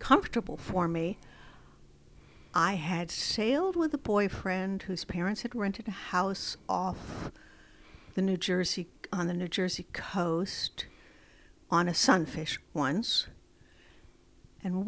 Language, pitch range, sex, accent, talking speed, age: English, 170-210 Hz, female, American, 115 wpm, 60-79